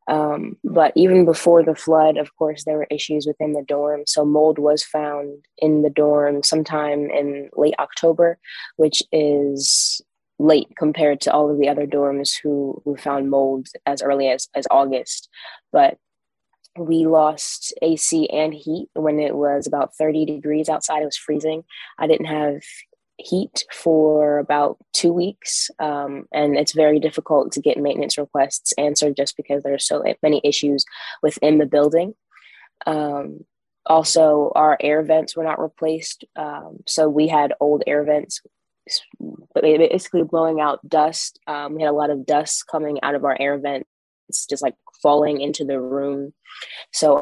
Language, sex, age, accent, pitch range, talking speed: English, female, 20-39, American, 140-155 Hz, 165 wpm